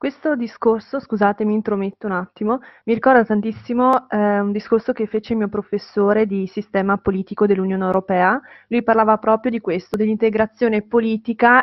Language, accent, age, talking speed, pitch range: Italian, native, 20-39, 155 wpm, 195-220 Hz